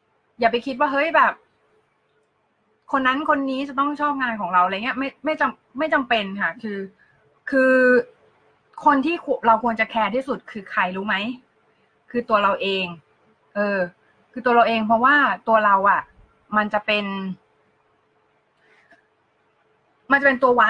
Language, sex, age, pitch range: Thai, female, 20-39, 220-270 Hz